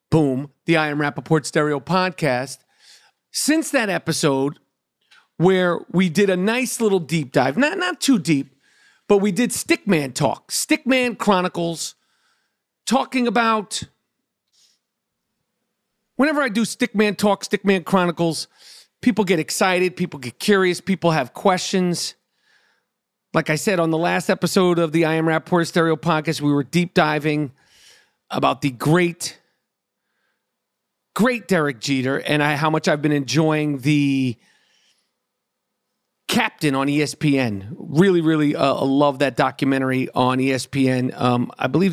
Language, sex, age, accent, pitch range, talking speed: English, male, 40-59, American, 145-195 Hz, 135 wpm